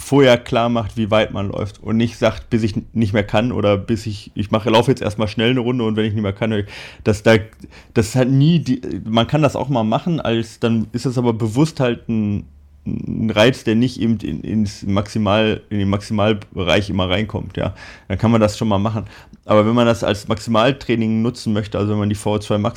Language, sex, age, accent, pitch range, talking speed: German, male, 30-49, German, 105-120 Hz, 230 wpm